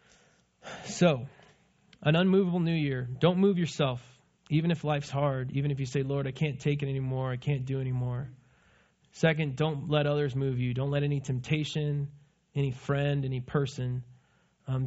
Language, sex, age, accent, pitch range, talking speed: English, male, 20-39, American, 135-180 Hz, 165 wpm